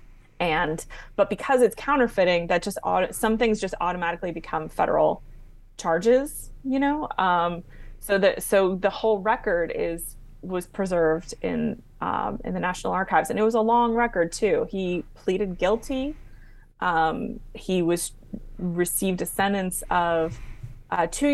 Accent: American